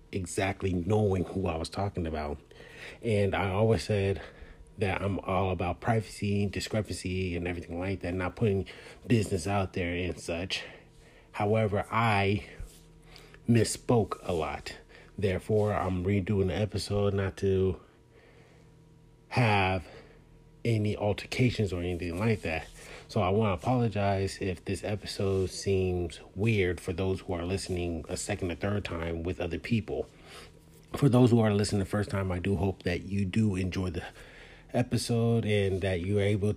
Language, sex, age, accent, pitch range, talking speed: English, male, 30-49, American, 90-110 Hz, 150 wpm